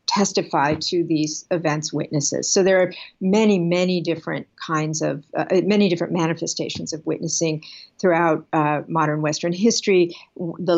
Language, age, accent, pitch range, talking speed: English, 50-69, American, 160-180 Hz, 140 wpm